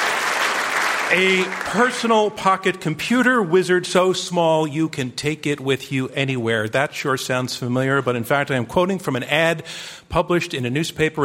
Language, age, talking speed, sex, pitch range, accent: English, 50-69, 165 wpm, male, 130-170 Hz, American